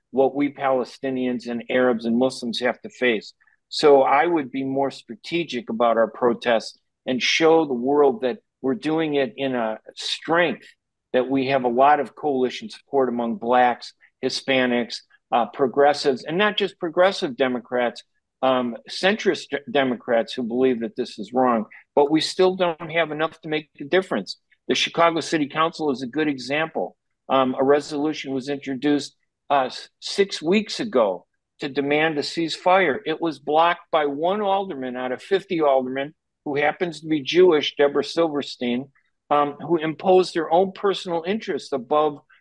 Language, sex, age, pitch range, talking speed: Arabic, male, 50-69, 135-170 Hz, 160 wpm